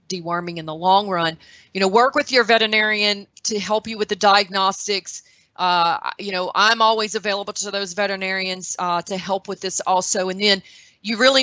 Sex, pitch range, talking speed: female, 180-215 Hz, 190 wpm